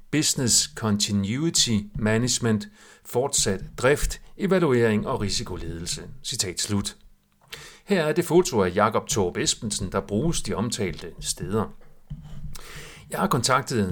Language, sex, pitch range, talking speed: Danish, male, 105-155 Hz, 110 wpm